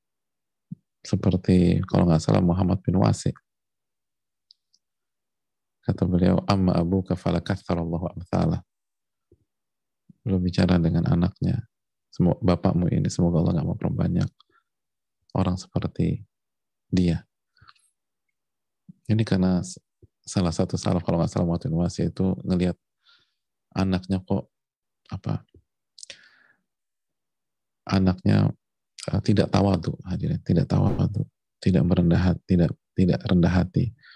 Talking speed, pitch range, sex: 105 wpm, 90-115 Hz, male